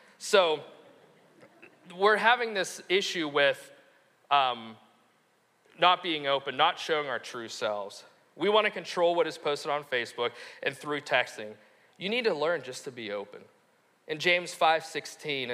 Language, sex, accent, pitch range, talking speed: English, male, American, 120-175 Hz, 145 wpm